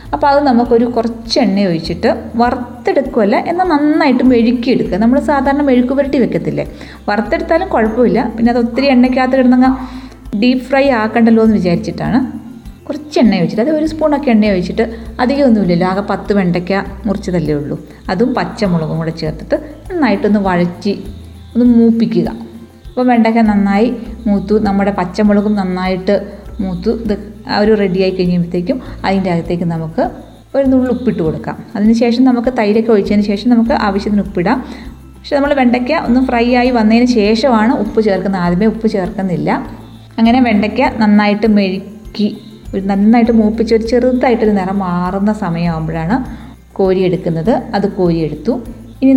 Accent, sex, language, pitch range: native, female, Malayalam, 195-250 Hz